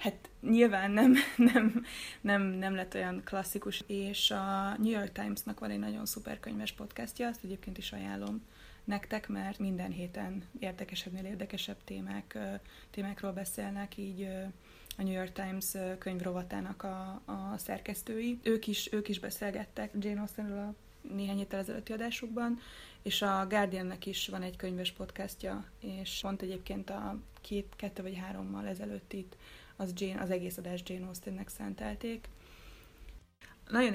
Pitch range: 185-205 Hz